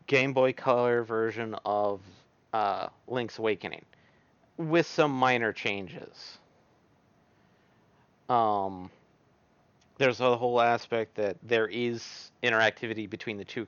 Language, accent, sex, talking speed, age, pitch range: English, American, male, 105 wpm, 40-59, 105-130 Hz